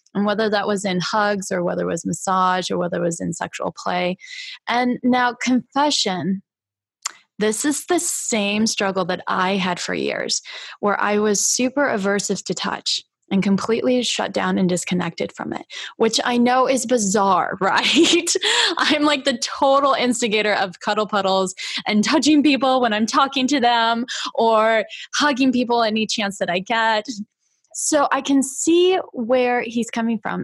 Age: 10-29